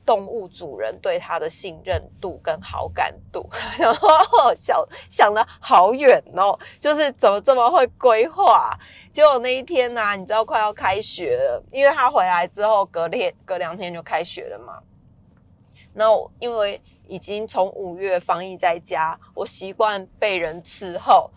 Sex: female